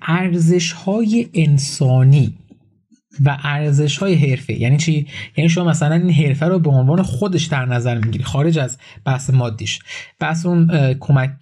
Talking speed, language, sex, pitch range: 135 wpm, Persian, male, 140-175 Hz